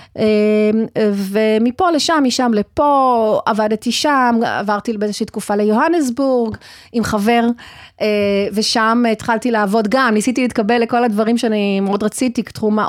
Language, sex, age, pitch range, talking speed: Hebrew, female, 30-49, 205-255 Hz, 110 wpm